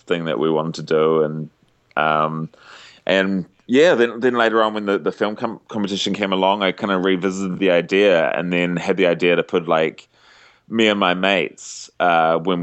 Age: 20-39